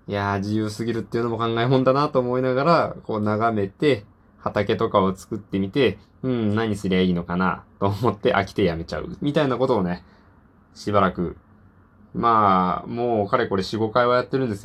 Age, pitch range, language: 20-39, 95-135 Hz, Japanese